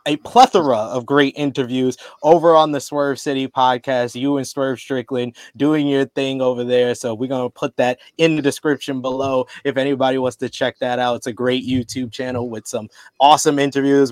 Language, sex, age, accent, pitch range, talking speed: English, male, 20-39, American, 135-165 Hz, 195 wpm